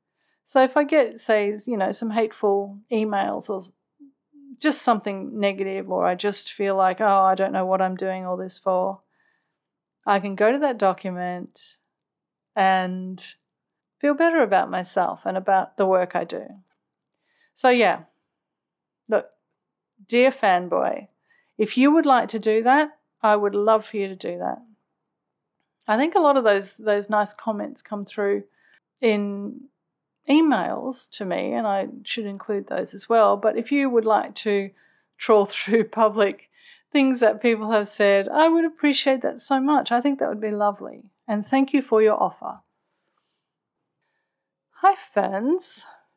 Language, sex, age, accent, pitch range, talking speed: English, female, 40-59, Australian, 195-260 Hz, 160 wpm